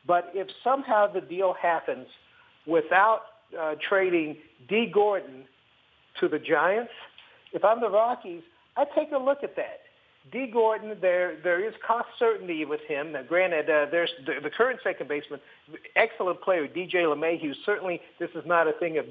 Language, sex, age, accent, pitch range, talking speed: English, male, 50-69, American, 150-205 Hz, 165 wpm